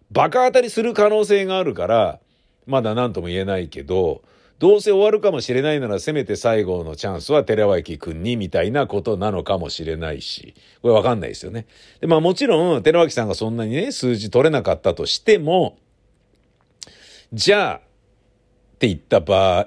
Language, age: Japanese, 50-69